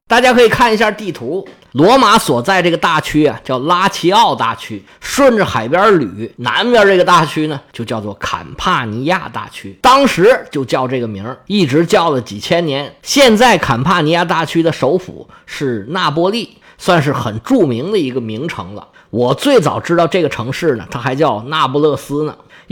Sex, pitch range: male, 130-195 Hz